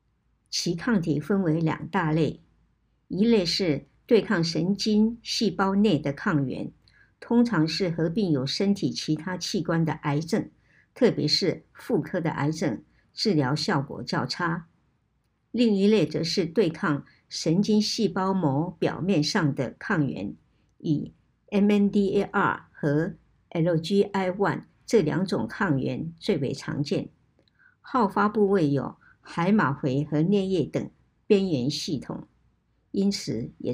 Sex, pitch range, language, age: male, 150-205 Hz, Chinese, 60-79